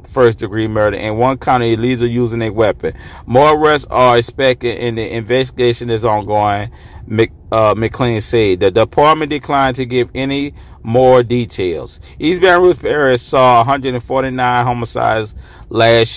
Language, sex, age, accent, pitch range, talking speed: English, male, 40-59, American, 110-130 Hz, 135 wpm